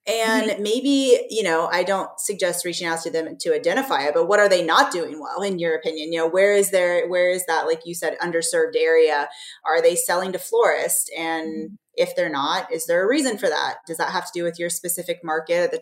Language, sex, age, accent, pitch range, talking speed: English, female, 20-39, American, 165-230 Hz, 235 wpm